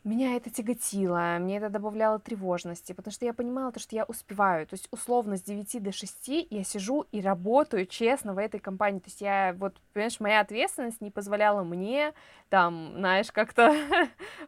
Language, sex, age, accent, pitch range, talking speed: Russian, female, 20-39, native, 185-230 Hz, 180 wpm